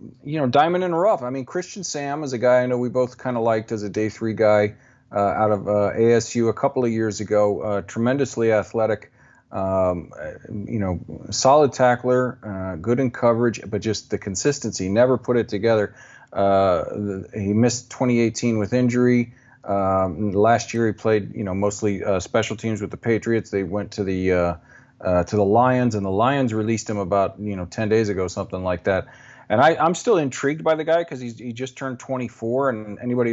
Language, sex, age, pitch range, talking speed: English, male, 40-59, 100-125 Hz, 205 wpm